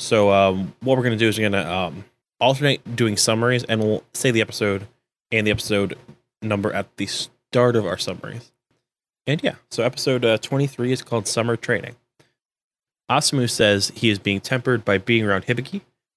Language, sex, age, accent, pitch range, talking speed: English, male, 20-39, American, 105-125 Hz, 185 wpm